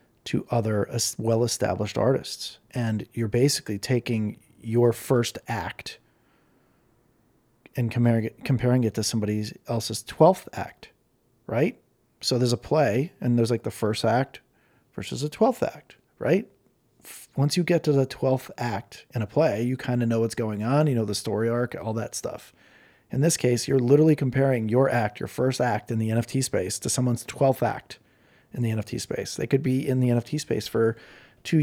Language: English